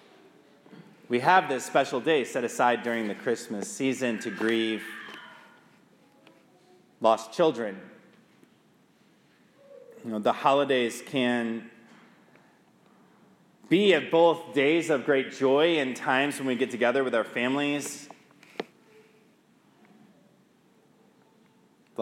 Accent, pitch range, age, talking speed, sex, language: American, 105-170 Hz, 30-49, 100 wpm, male, English